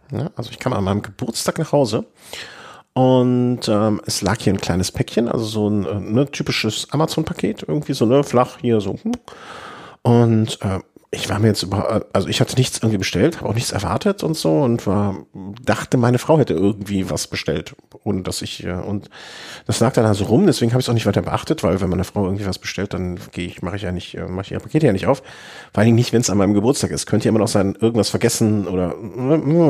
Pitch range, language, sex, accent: 95-120 Hz, German, male, German